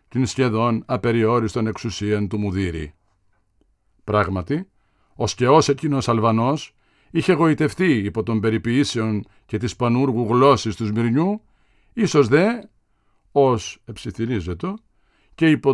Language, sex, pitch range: Greek, male, 105-140 Hz